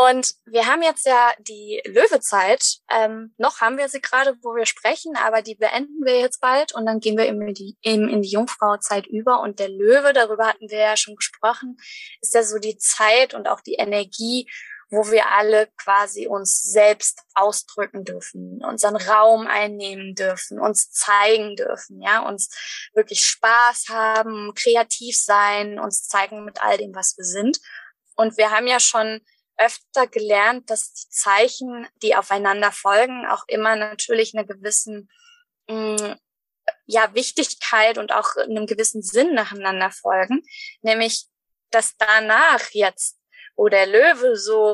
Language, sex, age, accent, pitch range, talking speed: German, female, 20-39, German, 210-265 Hz, 160 wpm